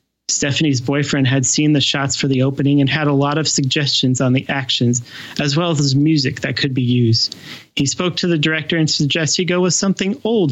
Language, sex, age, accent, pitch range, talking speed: English, male, 30-49, American, 135-170 Hz, 215 wpm